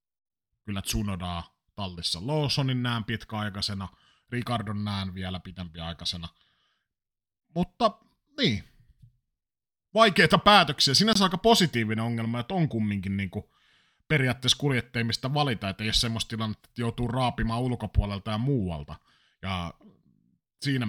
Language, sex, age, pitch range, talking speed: Finnish, male, 30-49, 105-135 Hz, 105 wpm